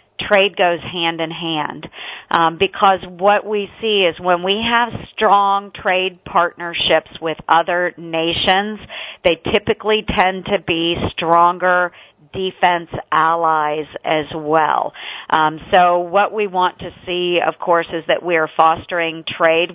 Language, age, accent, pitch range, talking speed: English, 50-69, American, 165-185 Hz, 135 wpm